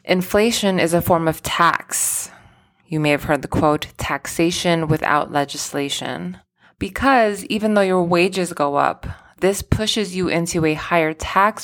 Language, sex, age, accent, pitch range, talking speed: English, female, 20-39, American, 150-180 Hz, 150 wpm